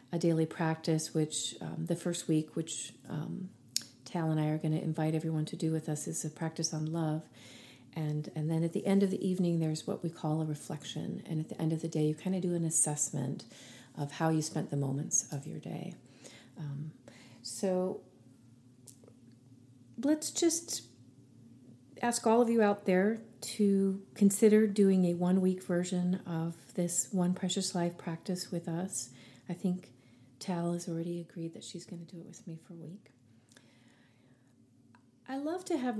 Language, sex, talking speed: English, female, 180 wpm